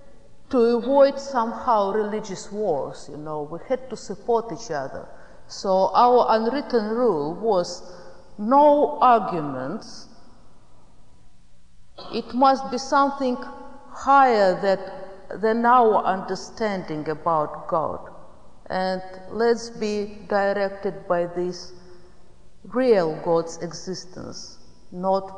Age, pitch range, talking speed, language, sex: 50-69, 185-245 Hz, 95 wpm, English, female